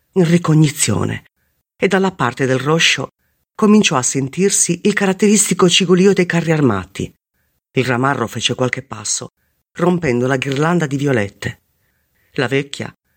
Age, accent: 40-59, native